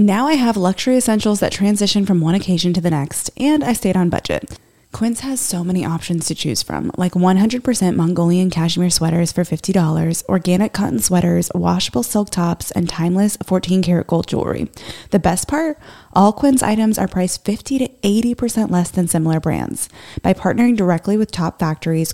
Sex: female